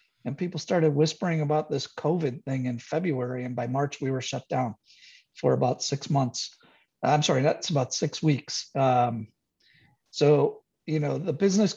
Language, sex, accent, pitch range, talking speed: English, male, American, 135-155 Hz, 170 wpm